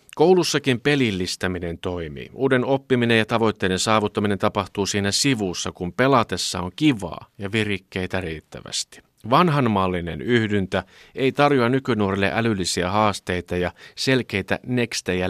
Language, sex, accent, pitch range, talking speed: Finnish, male, native, 90-120 Hz, 110 wpm